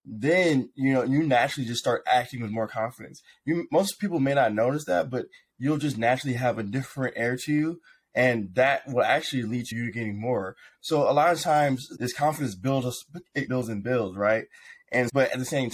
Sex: male